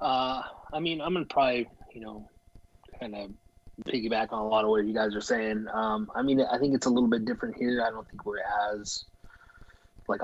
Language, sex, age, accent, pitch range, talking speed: English, male, 20-39, American, 105-115 Hz, 225 wpm